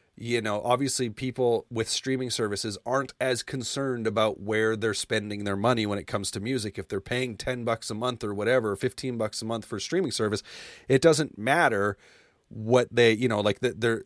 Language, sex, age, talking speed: English, male, 30-49, 200 wpm